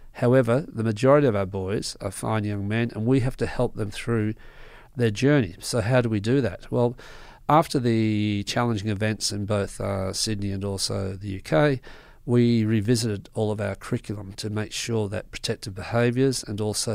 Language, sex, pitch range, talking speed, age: English, male, 105-125 Hz, 185 wpm, 40-59